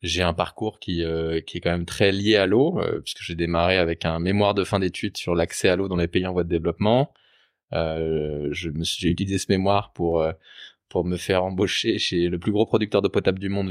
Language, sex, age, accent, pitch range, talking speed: French, male, 20-39, French, 90-110 Hz, 250 wpm